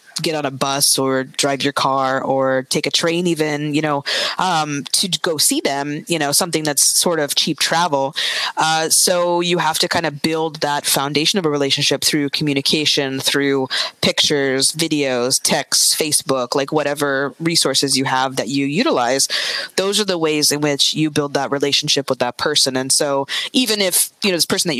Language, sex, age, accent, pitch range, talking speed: English, female, 20-39, American, 140-175 Hz, 190 wpm